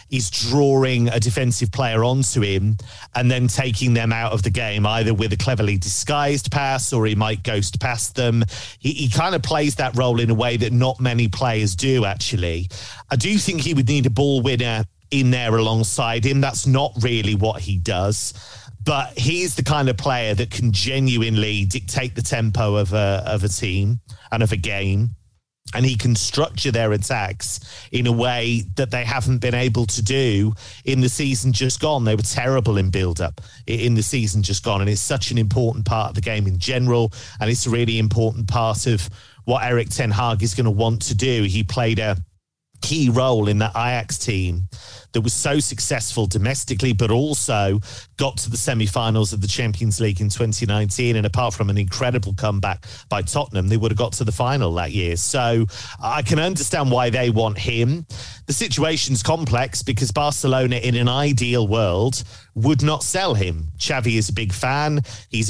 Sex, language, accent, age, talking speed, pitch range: male, English, British, 40-59, 195 wpm, 105-130 Hz